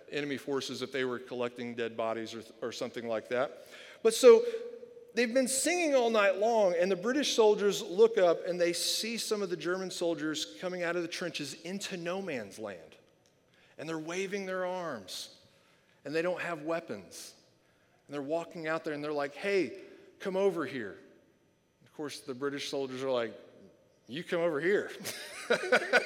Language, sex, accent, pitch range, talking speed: English, male, American, 150-230 Hz, 175 wpm